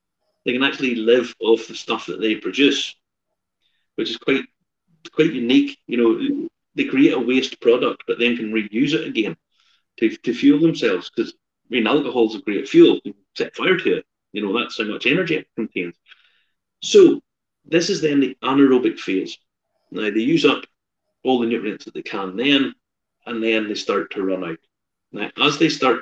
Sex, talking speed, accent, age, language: male, 190 wpm, British, 40-59, English